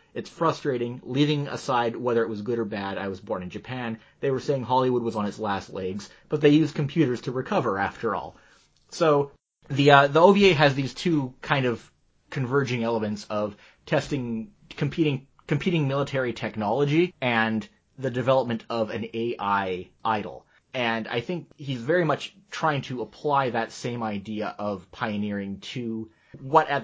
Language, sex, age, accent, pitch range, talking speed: English, male, 30-49, American, 110-145 Hz, 165 wpm